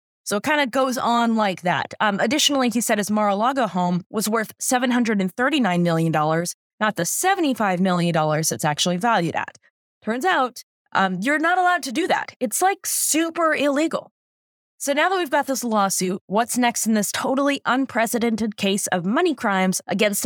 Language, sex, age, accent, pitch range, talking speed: English, female, 20-39, American, 190-275 Hz, 170 wpm